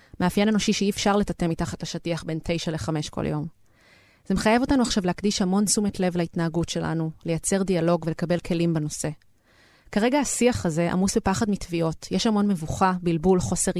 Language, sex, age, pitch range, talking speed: Hebrew, female, 30-49, 170-200 Hz, 165 wpm